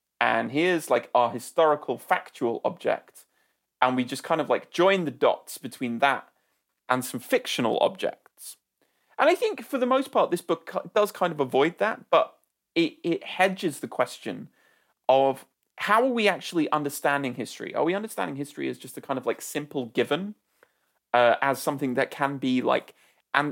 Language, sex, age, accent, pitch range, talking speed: English, male, 30-49, British, 130-180 Hz, 175 wpm